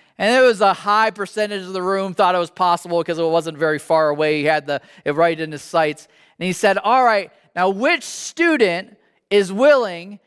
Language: English